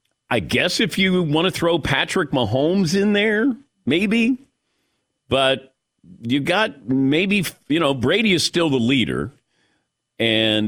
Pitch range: 125-190 Hz